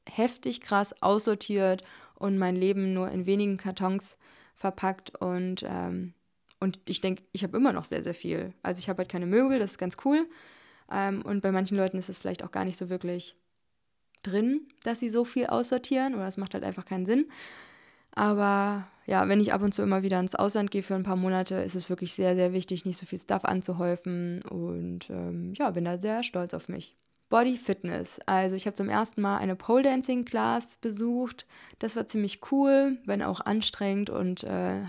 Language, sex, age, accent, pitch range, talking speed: German, female, 20-39, German, 185-210 Hz, 200 wpm